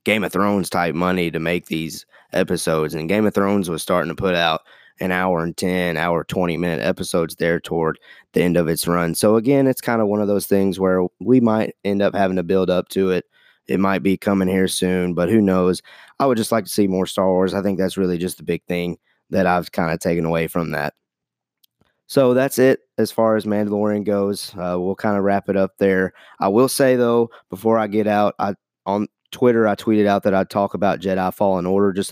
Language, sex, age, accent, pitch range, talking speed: English, male, 20-39, American, 95-110 Hz, 235 wpm